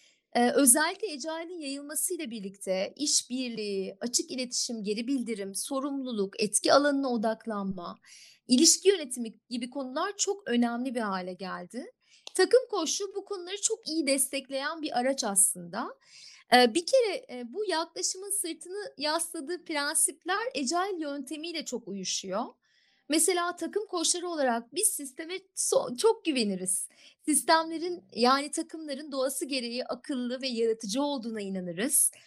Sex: female